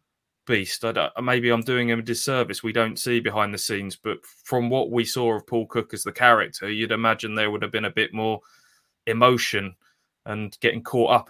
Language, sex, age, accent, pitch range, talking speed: English, male, 20-39, British, 110-125 Hz, 210 wpm